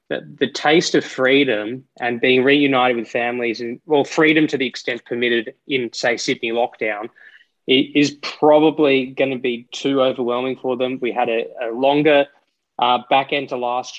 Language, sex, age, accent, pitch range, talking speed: English, male, 20-39, Australian, 120-140 Hz, 165 wpm